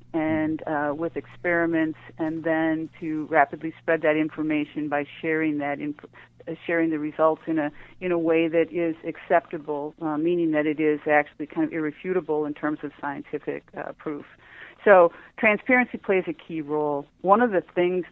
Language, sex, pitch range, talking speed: English, female, 150-165 Hz, 170 wpm